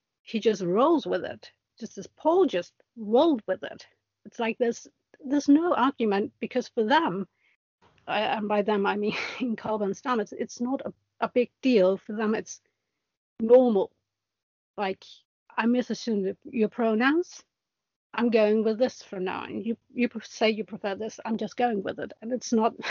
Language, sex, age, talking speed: English, female, 60-79, 175 wpm